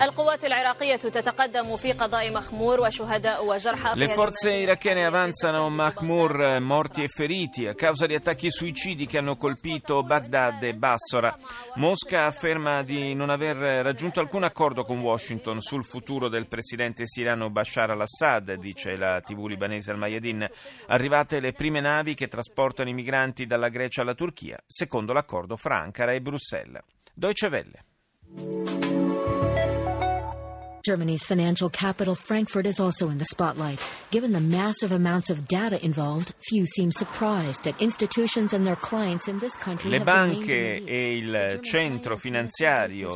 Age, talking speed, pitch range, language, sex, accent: 30-49, 95 wpm, 115-170 Hz, Italian, male, native